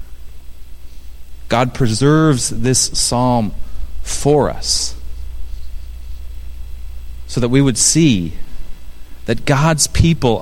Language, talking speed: English, 80 wpm